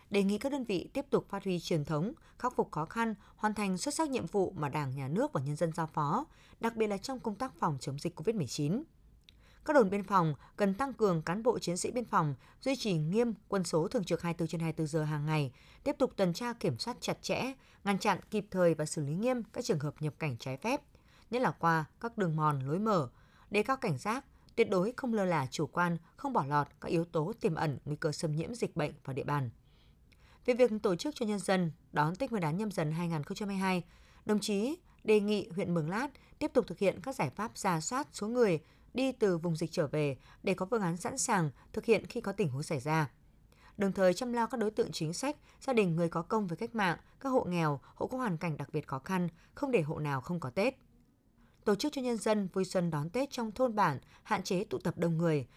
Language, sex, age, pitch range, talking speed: Vietnamese, female, 20-39, 160-225 Hz, 245 wpm